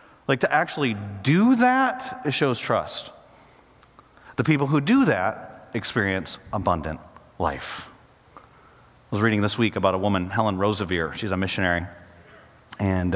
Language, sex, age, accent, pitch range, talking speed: English, male, 30-49, American, 100-120 Hz, 135 wpm